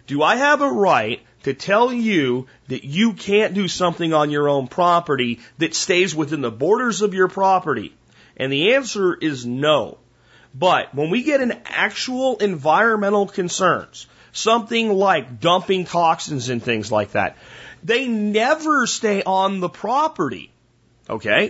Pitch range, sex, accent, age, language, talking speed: 145-215 Hz, male, American, 40-59, French, 150 wpm